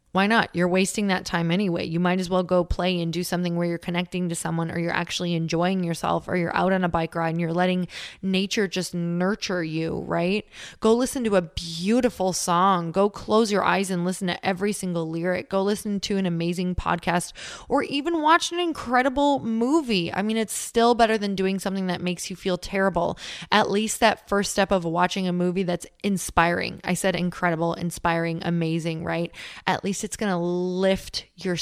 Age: 20-39